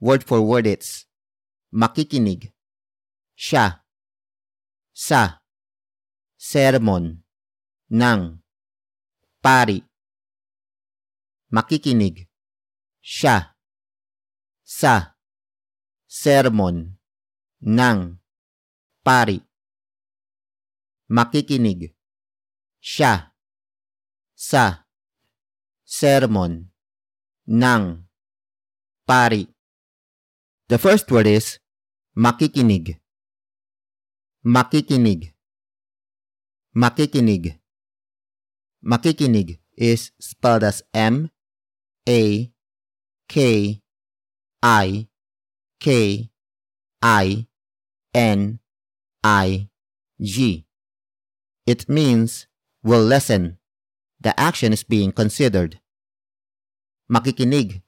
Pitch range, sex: 100-120 Hz, male